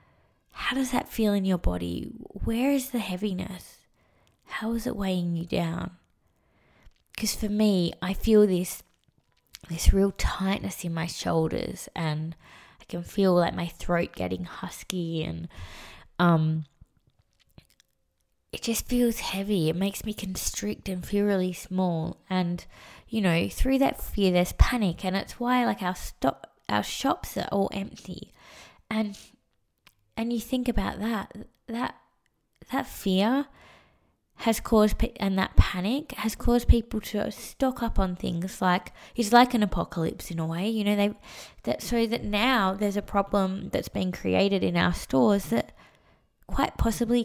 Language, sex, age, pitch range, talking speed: English, female, 20-39, 175-220 Hz, 150 wpm